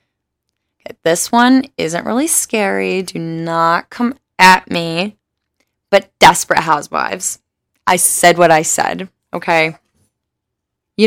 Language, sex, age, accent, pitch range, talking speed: English, female, 20-39, American, 185-240 Hz, 110 wpm